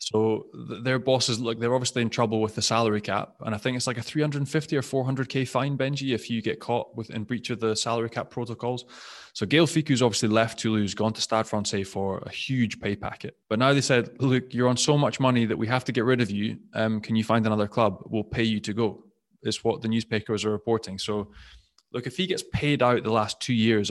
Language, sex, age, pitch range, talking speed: English, male, 20-39, 110-125 Hz, 240 wpm